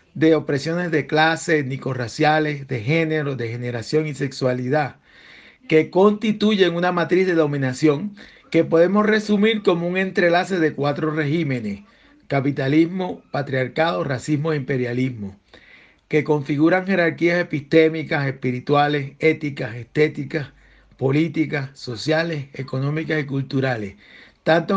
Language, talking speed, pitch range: Spanish, 105 wpm, 145-180 Hz